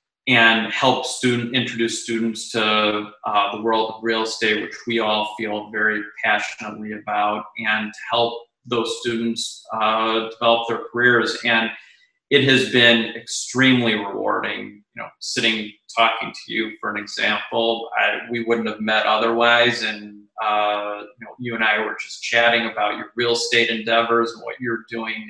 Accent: American